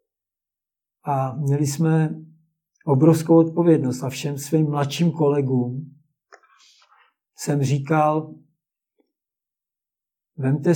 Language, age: Czech, 60-79